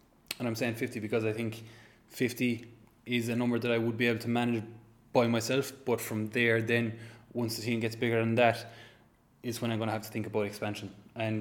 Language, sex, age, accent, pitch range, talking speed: English, male, 20-39, Irish, 115-130 Hz, 220 wpm